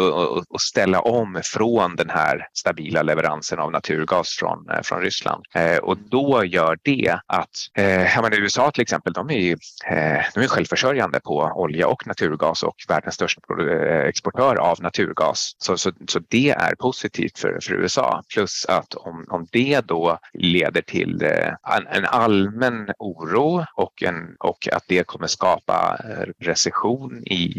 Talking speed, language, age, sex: 135 wpm, Swedish, 30-49, male